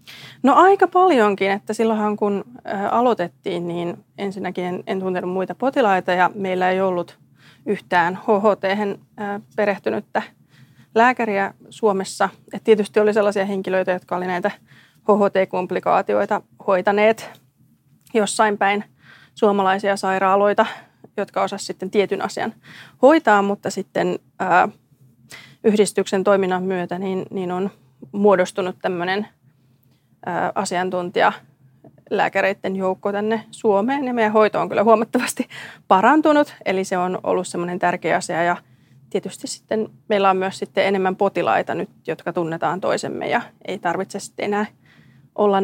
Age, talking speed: 30-49, 115 wpm